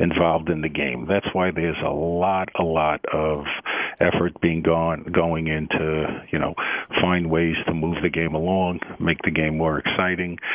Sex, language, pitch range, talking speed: male, English, 85-105 Hz, 175 wpm